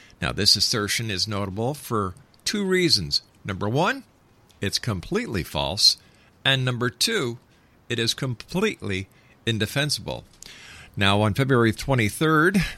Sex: male